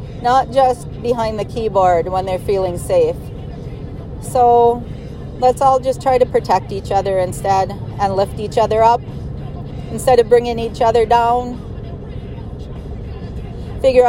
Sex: female